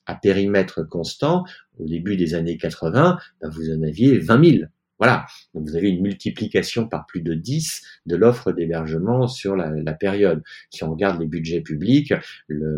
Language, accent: French, French